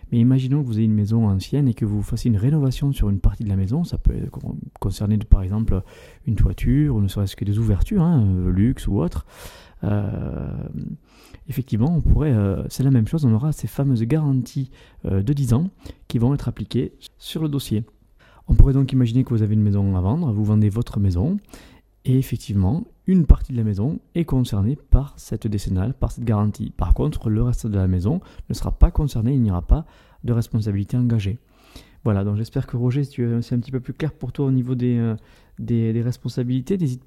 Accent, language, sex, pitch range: French, French, male, 105-135 Hz